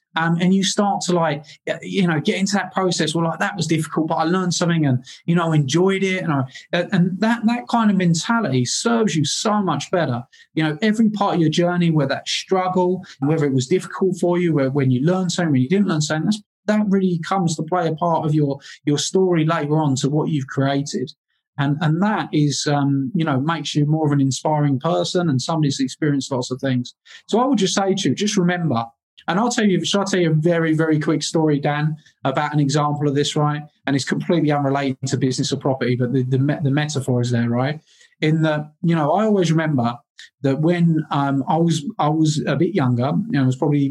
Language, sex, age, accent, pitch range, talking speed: English, male, 20-39, British, 135-175 Hz, 230 wpm